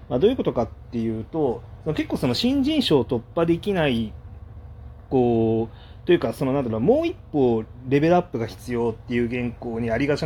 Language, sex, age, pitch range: Japanese, male, 30-49, 110-165 Hz